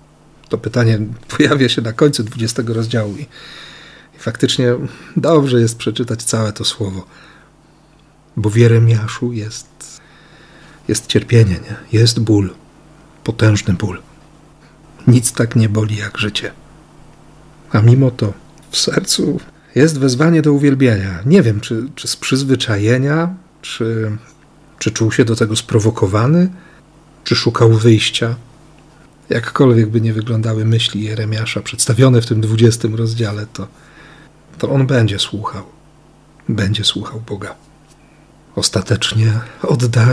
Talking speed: 120 wpm